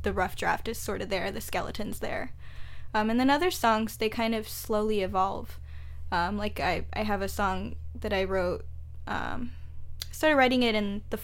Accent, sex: American, female